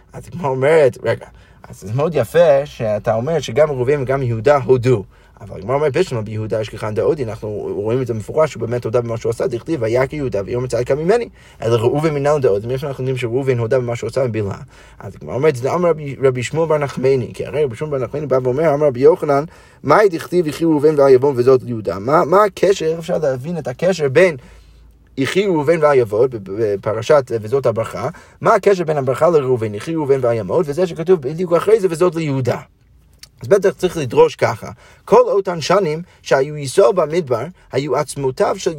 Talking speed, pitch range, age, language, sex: 180 wpm, 125-165 Hz, 30-49, Hebrew, male